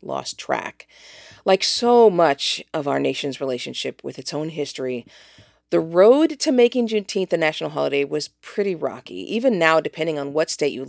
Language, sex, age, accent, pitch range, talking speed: English, female, 40-59, American, 150-215 Hz, 170 wpm